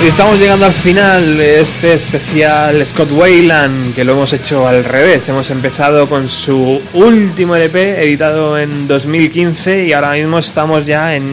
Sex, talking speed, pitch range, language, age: male, 160 wpm, 135-170 Hz, Spanish, 20-39